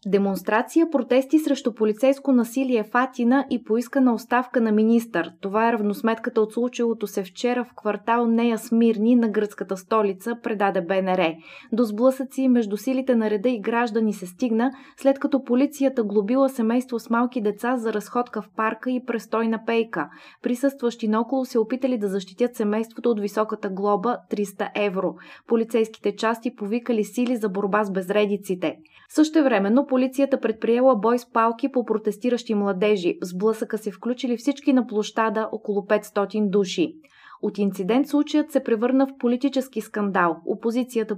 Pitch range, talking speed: 210-250 Hz, 145 wpm